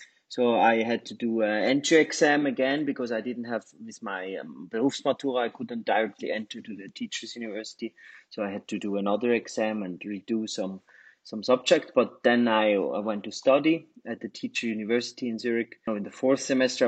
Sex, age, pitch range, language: male, 30-49, 110-140 Hz, Chinese